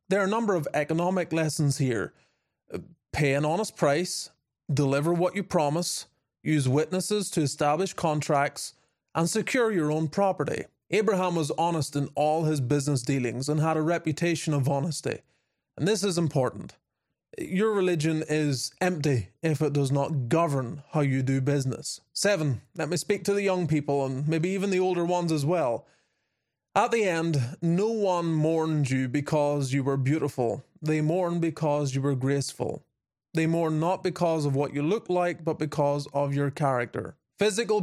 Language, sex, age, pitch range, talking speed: English, male, 30-49, 140-175 Hz, 170 wpm